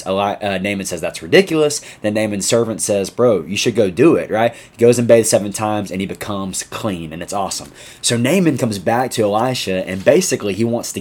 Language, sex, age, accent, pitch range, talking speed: English, male, 20-39, American, 95-115 Hz, 225 wpm